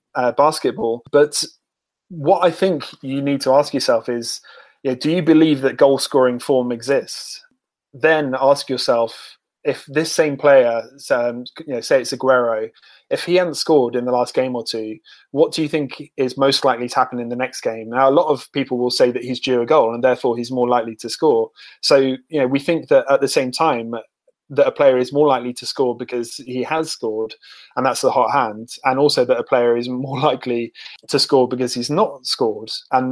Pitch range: 120-140 Hz